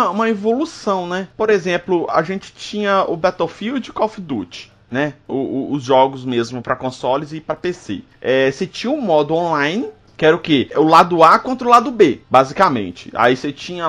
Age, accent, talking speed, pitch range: 20-39, Brazilian, 200 wpm, 130-200 Hz